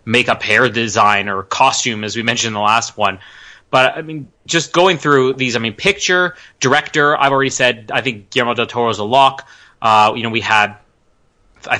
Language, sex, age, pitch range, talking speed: English, male, 20-39, 110-135 Hz, 205 wpm